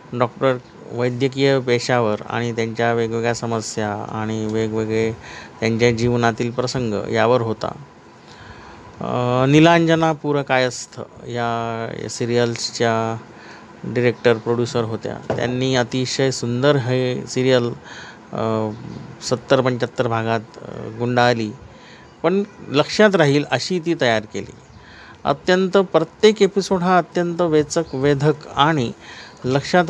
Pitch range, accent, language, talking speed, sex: 120-150 Hz, native, Marathi, 100 wpm, male